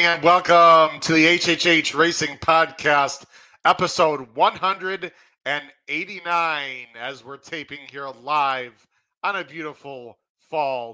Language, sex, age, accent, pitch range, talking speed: English, male, 40-59, American, 130-160 Hz, 100 wpm